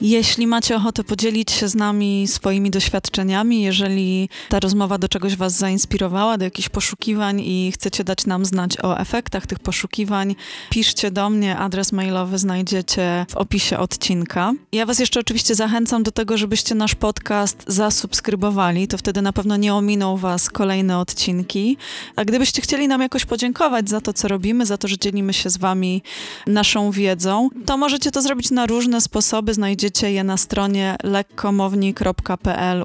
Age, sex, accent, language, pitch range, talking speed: 20-39, female, native, Polish, 190-220 Hz, 160 wpm